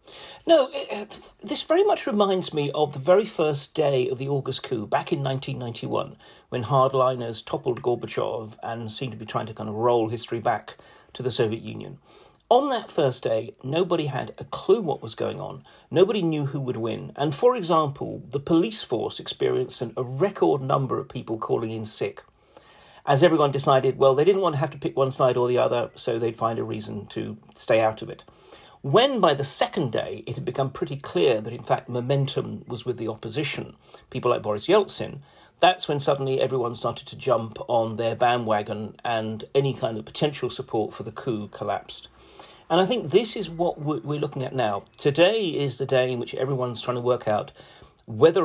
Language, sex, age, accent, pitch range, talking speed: English, male, 40-59, British, 115-150 Hz, 195 wpm